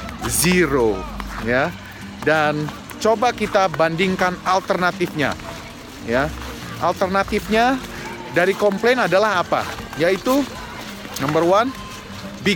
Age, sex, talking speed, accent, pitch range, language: 30-49, male, 80 wpm, native, 160-210 Hz, Indonesian